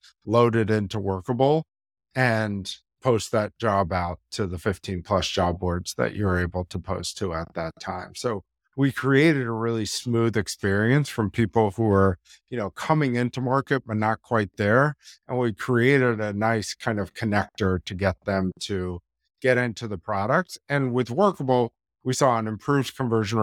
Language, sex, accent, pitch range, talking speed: English, male, American, 95-120 Hz, 175 wpm